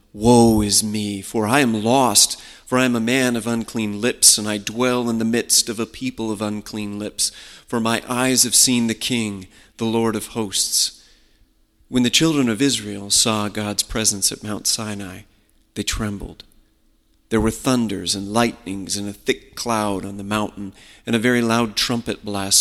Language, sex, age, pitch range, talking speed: English, male, 40-59, 100-115 Hz, 185 wpm